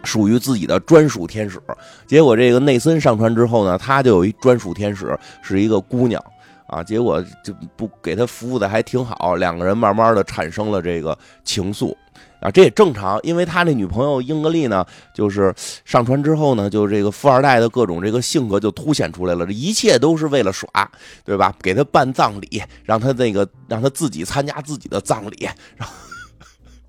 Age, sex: 30-49, male